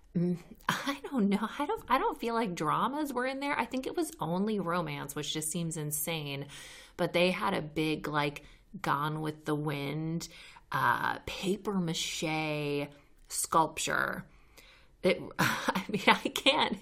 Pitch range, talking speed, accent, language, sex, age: 155-200 Hz, 150 wpm, American, English, female, 30-49